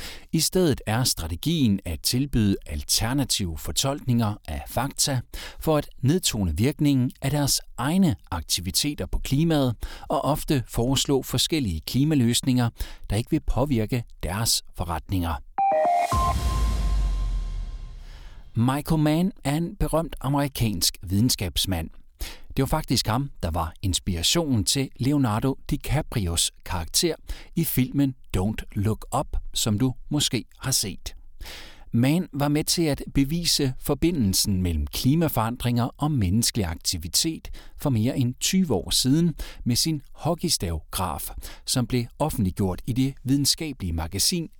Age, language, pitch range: 60-79, Danish, 95-140 Hz